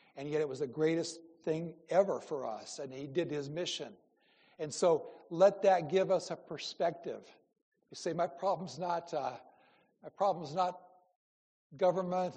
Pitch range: 150-180 Hz